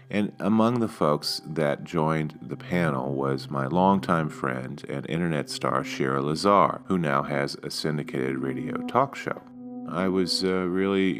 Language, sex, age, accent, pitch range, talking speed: English, male, 40-59, American, 70-95 Hz, 155 wpm